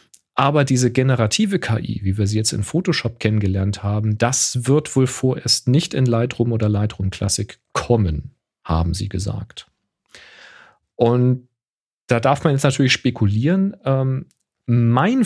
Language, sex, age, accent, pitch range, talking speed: German, male, 40-59, German, 105-130 Hz, 140 wpm